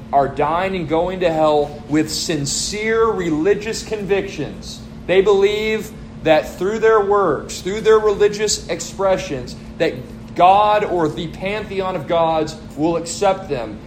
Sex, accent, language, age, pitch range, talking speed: male, American, English, 30-49, 165-210 Hz, 130 wpm